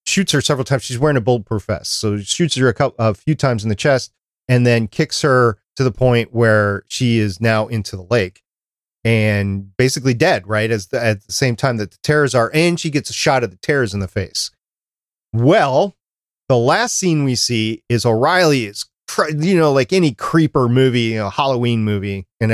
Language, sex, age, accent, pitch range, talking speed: English, male, 40-59, American, 110-140 Hz, 215 wpm